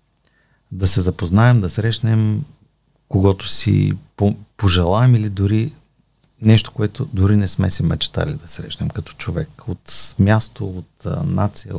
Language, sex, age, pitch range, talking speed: Bulgarian, male, 50-69, 95-120 Hz, 135 wpm